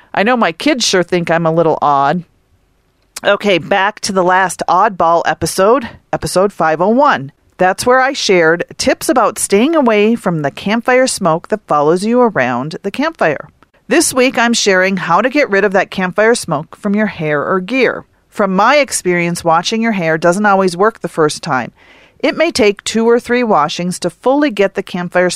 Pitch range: 165-225 Hz